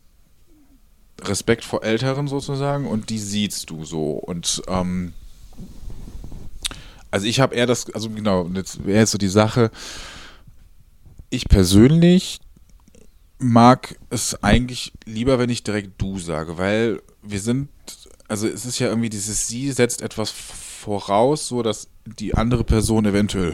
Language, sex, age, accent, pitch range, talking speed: German, male, 20-39, German, 95-120 Hz, 140 wpm